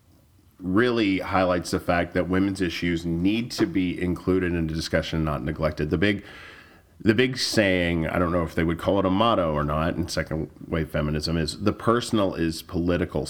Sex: male